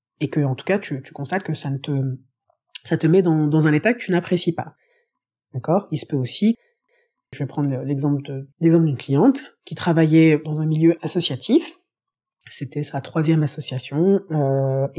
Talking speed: 190 wpm